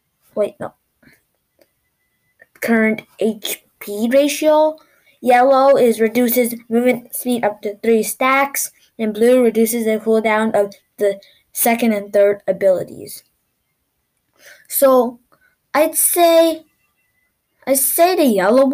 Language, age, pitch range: English, 10-29, 210-260 Hz